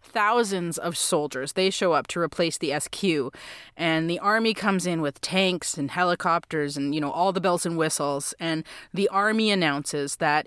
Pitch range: 150-185 Hz